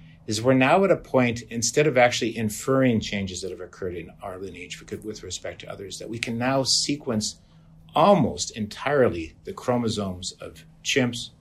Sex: male